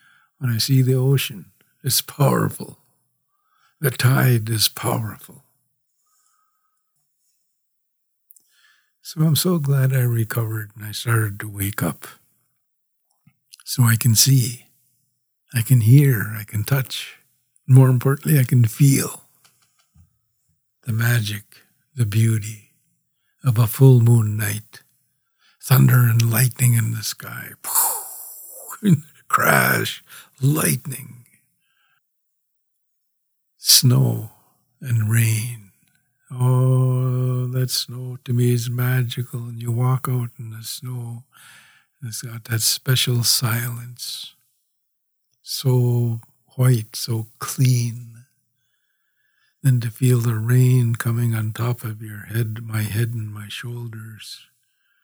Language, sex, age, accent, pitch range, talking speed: English, male, 60-79, American, 115-135 Hz, 105 wpm